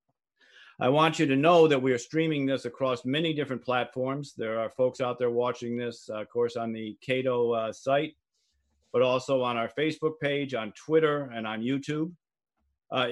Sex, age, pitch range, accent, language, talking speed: male, 40-59, 120-140 Hz, American, English, 190 wpm